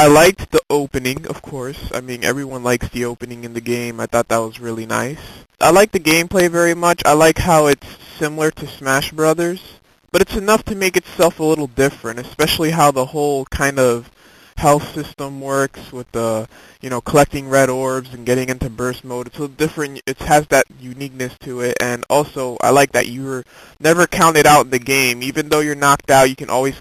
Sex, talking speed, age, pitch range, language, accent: male, 215 wpm, 20-39, 125-145 Hz, English, American